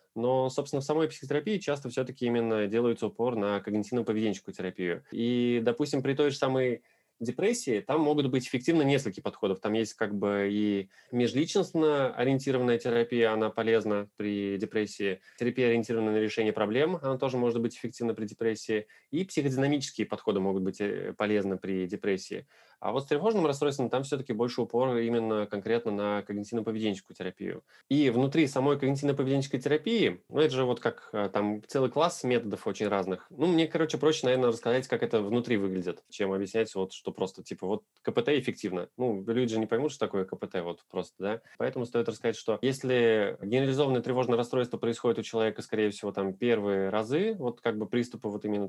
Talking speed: 175 wpm